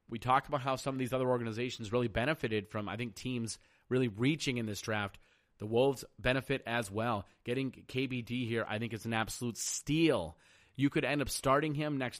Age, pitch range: 30-49, 110-130 Hz